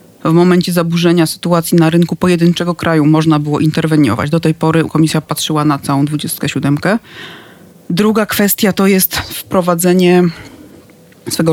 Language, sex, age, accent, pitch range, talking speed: Polish, female, 30-49, native, 150-180 Hz, 130 wpm